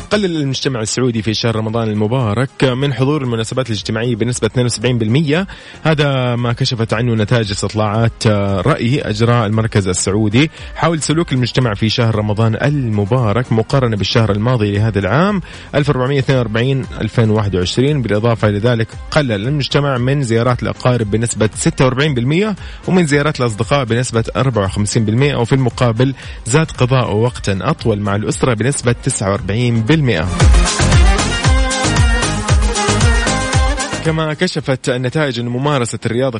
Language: Arabic